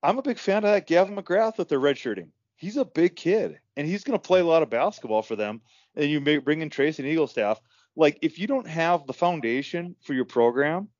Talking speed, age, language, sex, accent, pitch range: 245 wpm, 30-49, English, male, American, 135-180 Hz